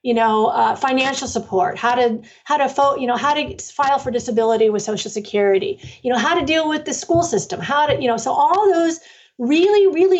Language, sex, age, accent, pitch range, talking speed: English, female, 40-59, American, 210-285 Hz, 220 wpm